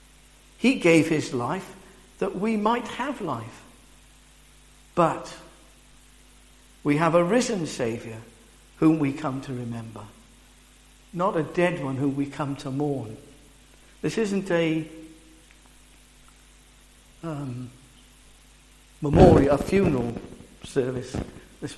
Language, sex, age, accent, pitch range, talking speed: English, male, 60-79, British, 130-165 Hz, 105 wpm